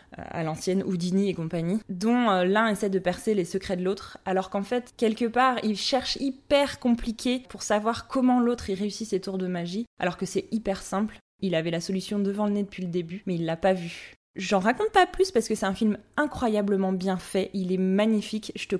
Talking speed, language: 225 wpm, French